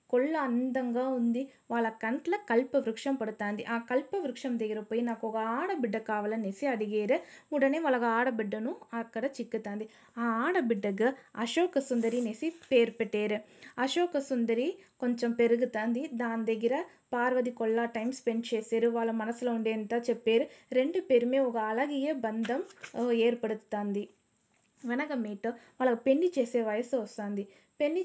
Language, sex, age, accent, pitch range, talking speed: Telugu, female, 20-39, native, 230-275 Hz, 120 wpm